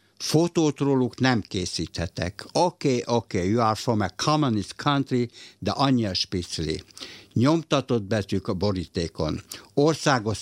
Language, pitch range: Hungarian, 95-125 Hz